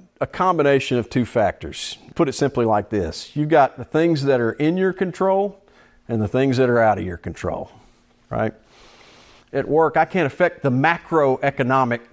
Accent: American